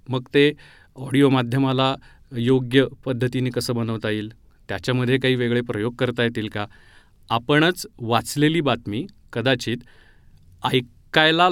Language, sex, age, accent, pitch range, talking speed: Marathi, male, 30-49, native, 115-145 Hz, 110 wpm